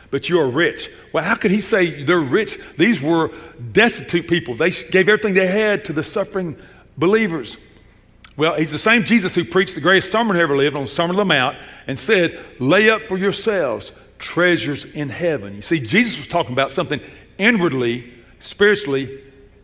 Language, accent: English, American